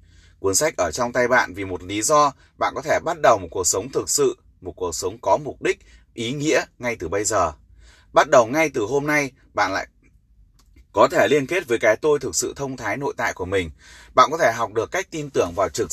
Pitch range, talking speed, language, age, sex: 115-180 Hz, 245 wpm, Vietnamese, 20-39, male